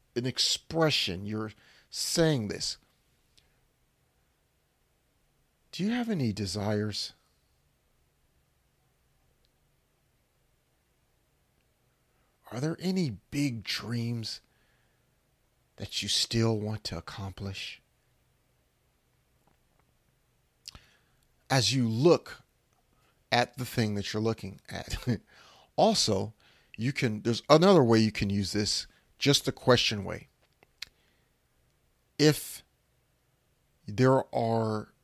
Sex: male